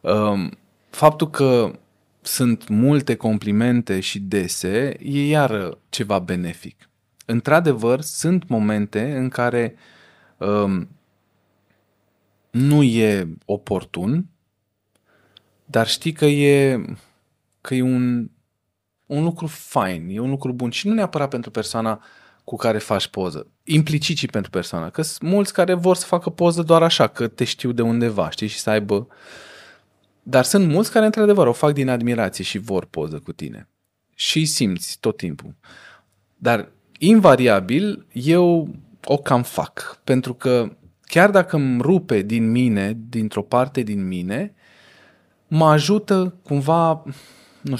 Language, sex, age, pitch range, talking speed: Romanian, male, 20-39, 105-150 Hz, 135 wpm